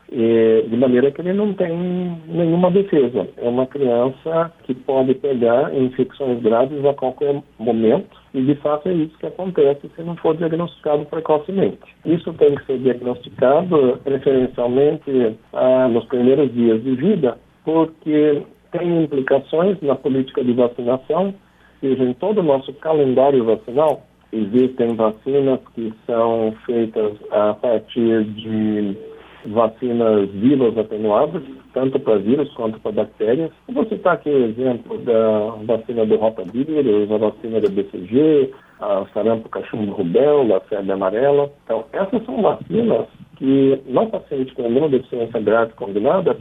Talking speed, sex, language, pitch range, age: 135 wpm, male, Portuguese, 115-150 Hz, 60-79